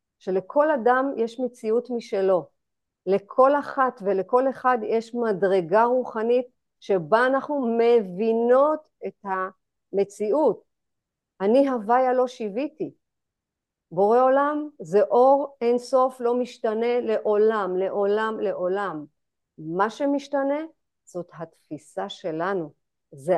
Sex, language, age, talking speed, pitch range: female, Hebrew, 50-69, 95 wpm, 200-275 Hz